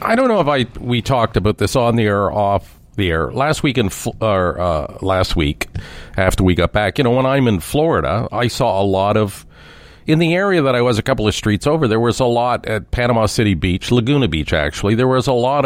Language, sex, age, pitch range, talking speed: English, male, 50-69, 100-145 Hz, 245 wpm